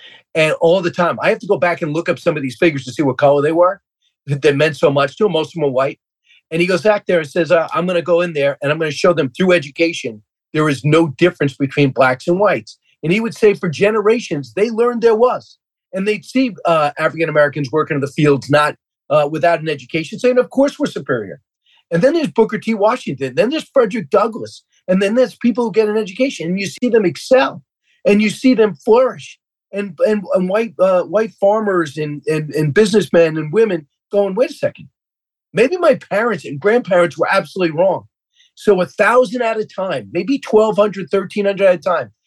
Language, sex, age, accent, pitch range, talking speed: English, male, 40-59, American, 155-215 Hz, 225 wpm